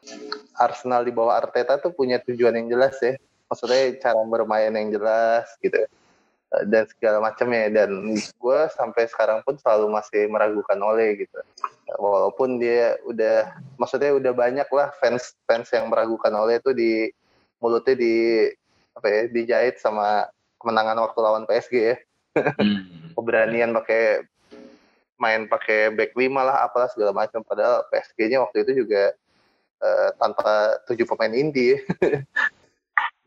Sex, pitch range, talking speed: male, 110-145 Hz, 135 wpm